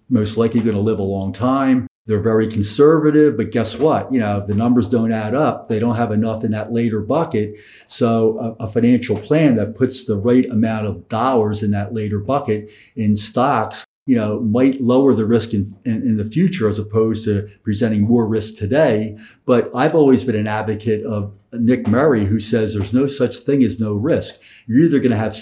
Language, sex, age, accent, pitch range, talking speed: English, male, 50-69, American, 105-125 Hz, 210 wpm